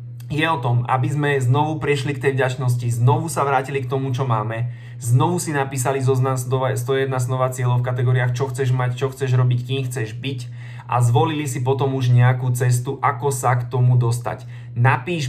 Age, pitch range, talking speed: 20-39, 125-135 Hz, 190 wpm